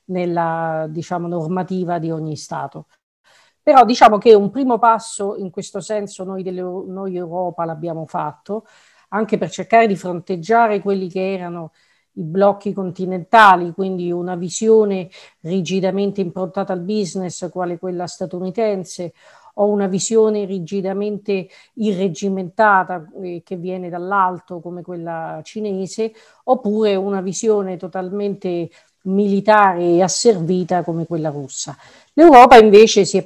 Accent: native